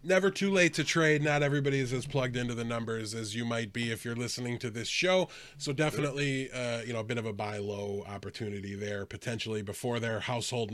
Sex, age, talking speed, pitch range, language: male, 20-39, 220 wpm, 115-145 Hz, English